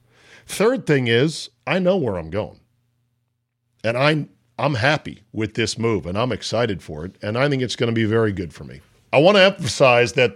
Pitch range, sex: 100-135 Hz, male